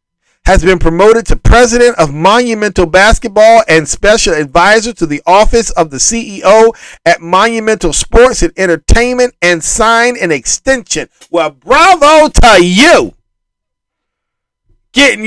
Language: English